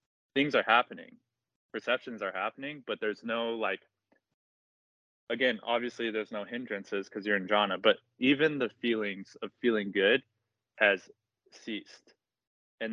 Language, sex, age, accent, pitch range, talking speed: English, male, 20-39, American, 105-125 Hz, 135 wpm